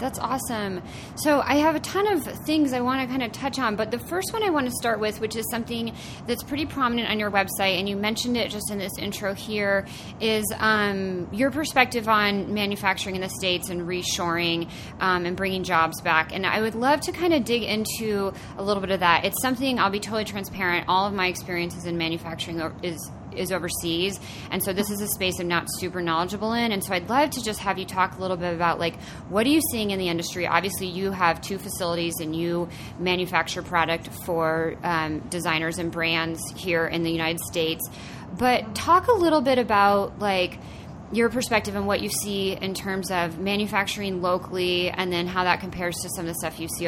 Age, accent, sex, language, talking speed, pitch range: 30-49, American, female, English, 215 wpm, 170-220 Hz